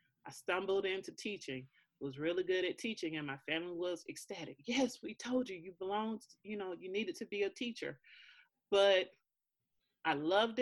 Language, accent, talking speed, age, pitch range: English, American, 175 wpm, 30-49, 165-215 Hz